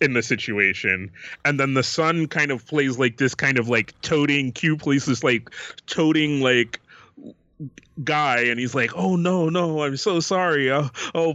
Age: 30-49